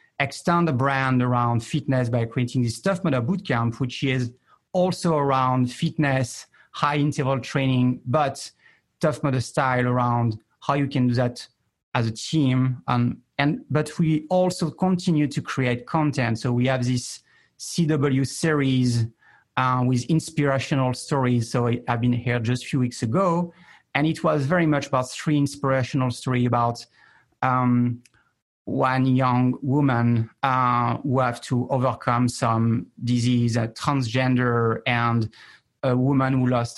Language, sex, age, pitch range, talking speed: English, male, 40-59, 120-145 Hz, 145 wpm